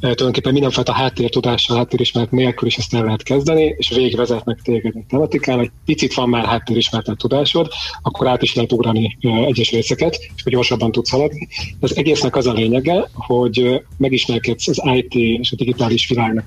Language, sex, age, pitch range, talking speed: Hungarian, male, 30-49, 115-130 Hz, 175 wpm